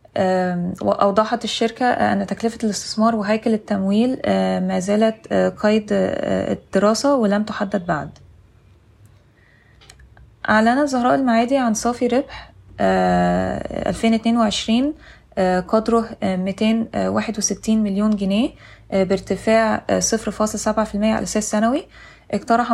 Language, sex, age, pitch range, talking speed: Arabic, female, 20-39, 190-230 Hz, 80 wpm